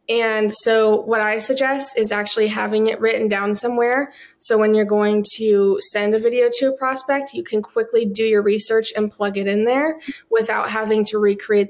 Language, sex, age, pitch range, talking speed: English, female, 20-39, 210-235 Hz, 195 wpm